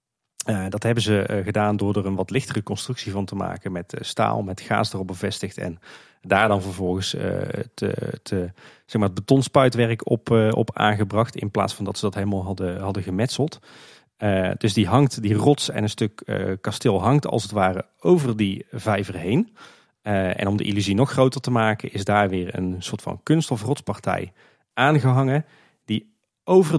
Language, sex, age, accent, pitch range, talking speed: Dutch, male, 40-59, Dutch, 100-130 Hz, 195 wpm